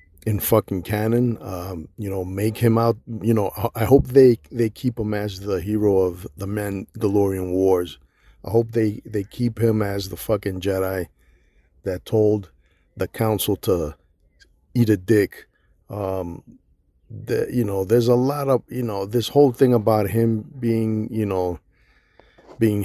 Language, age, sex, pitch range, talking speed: English, 50-69, male, 95-115 Hz, 160 wpm